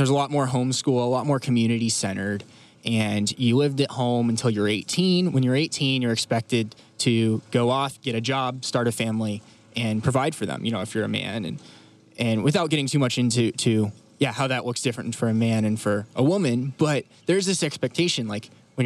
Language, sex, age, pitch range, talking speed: English, male, 20-39, 115-135 Hz, 215 wpm